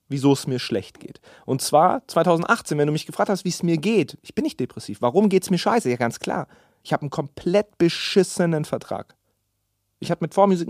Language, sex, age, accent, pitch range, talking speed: German, male, 30-49, German, 115-170 Hz, 220 wpm